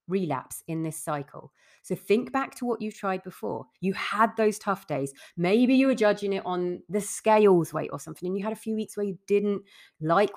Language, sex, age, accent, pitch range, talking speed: English, female, 30-49, British, 160-240 Hz, 220 wpm